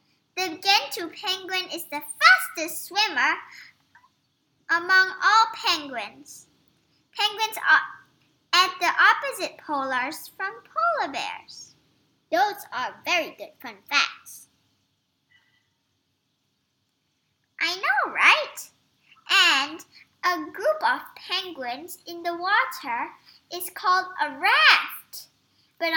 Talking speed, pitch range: 95 wpm, 305-390 Hz